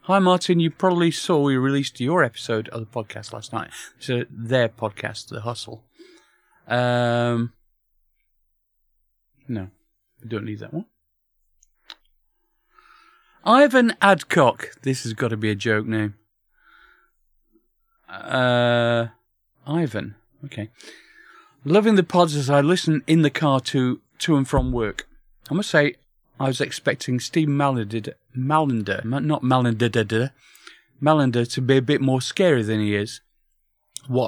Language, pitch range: English, 110-145 Hz